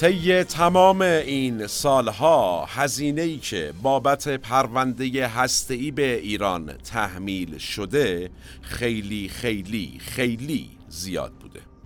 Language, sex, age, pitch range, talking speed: Persian, male, 50-69, 95-130 Hz, 85 wpm